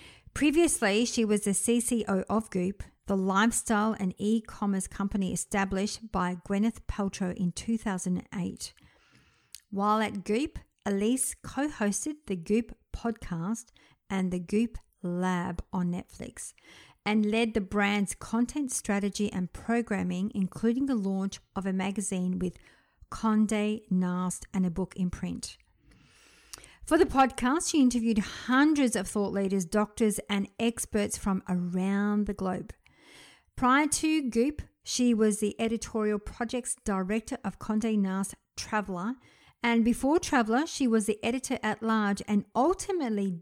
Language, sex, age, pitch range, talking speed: English, female, 50-69, 195-230 Hz, 125 wpm